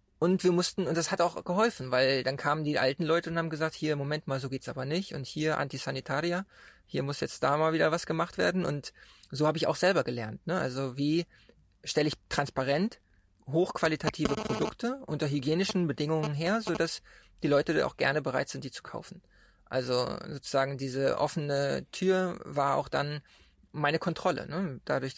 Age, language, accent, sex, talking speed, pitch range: 20-39, German, German, male, 190 wpm, 140-170 Hz